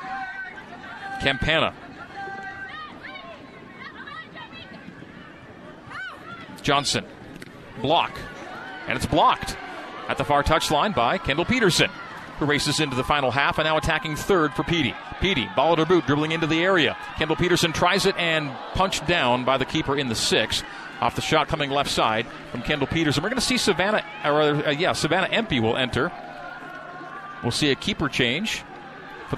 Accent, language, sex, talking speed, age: American, English, male, 150 wpm, 40-59